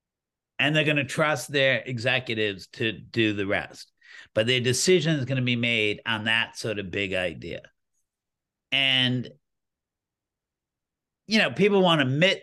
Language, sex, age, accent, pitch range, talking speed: English, male, 50-69, American, 110-145 Hz, 155 wpm